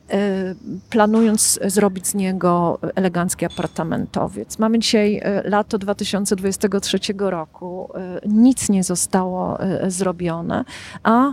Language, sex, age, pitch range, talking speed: Polish, female, 40-59, 180-220 Hz, 85 wpm